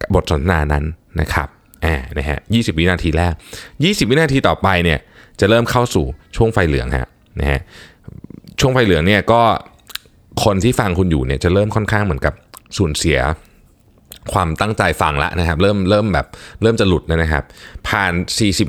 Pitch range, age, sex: 80-110 Hz, 20-39, male